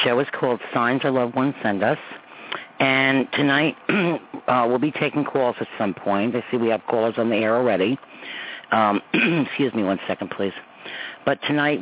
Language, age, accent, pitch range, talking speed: English, 50-69, American, 110-140 Hz, 190 wpm